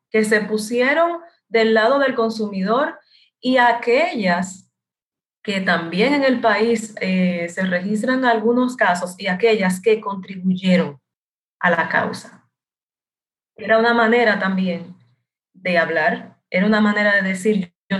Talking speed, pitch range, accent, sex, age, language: 125 wpm, 180-225 Hz, American, female, 30-49, Spanish